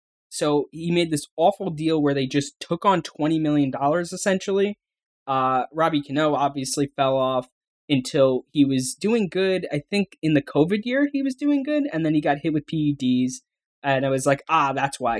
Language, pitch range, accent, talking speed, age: English, 125-160 Hz, American, 195 wpm, 10-29